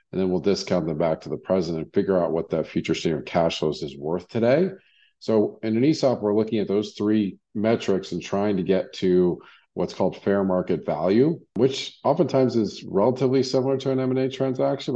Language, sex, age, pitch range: English, male, 50-69, 85-115 Hz